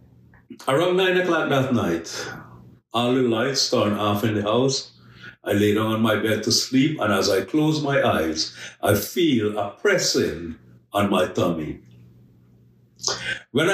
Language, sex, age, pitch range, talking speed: English, male, 50-69, 90-135 Hz, 155 wpm